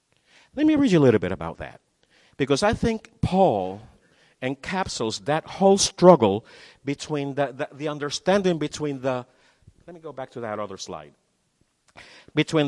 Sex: male